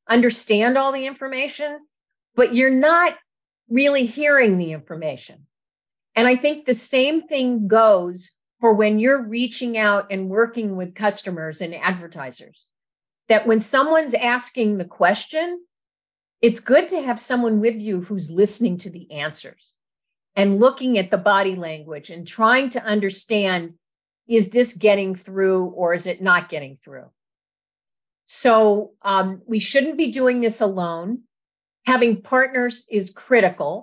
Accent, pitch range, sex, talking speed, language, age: American, 185-250 Hz, female, 140 wpm, English, 50-69